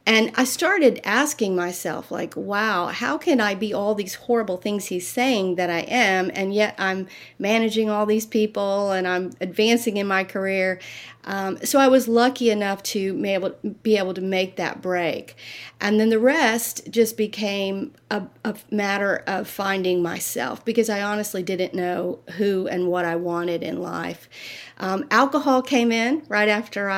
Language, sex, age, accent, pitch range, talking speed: English, female, 40-59, American, 180-215 Hz, 170 wpm